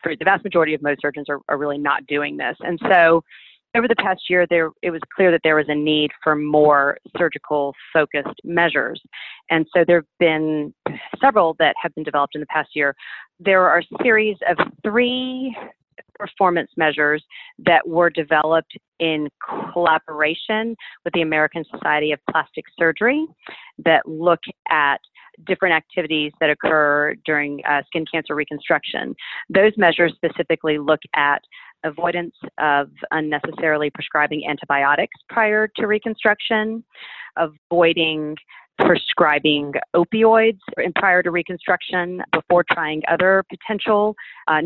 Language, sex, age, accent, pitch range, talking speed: English, female, 40-59, American, 150-185 Hz, 135 wpm